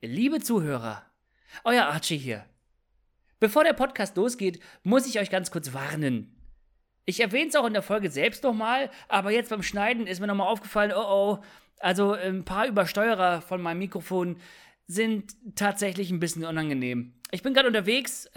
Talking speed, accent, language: 165 wpm, German, German